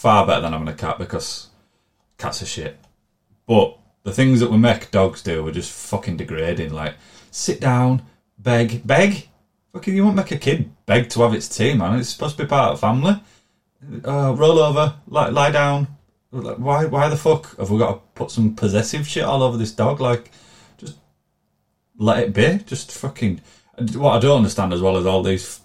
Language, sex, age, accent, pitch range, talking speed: English, male, 30-49, British, 95-125 Hz, 200 wpm